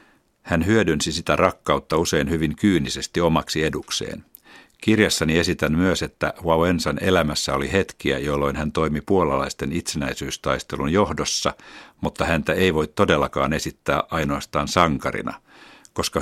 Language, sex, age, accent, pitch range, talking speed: Finnish, male, 60-79, native, 75-85 Hz, 120 wpm